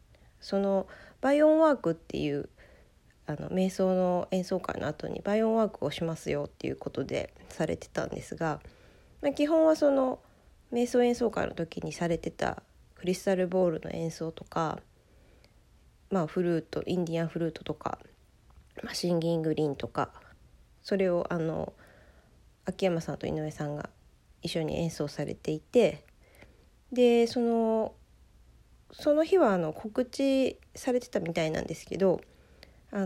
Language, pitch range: Japanese, 150-220 Hz